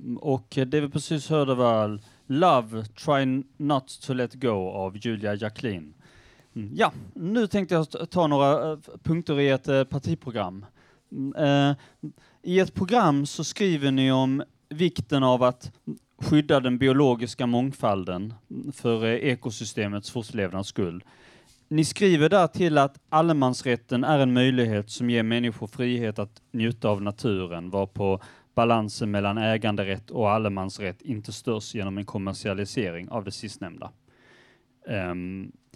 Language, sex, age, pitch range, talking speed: Swedish, male, 30-49, 105-140 Hz, 125 wpm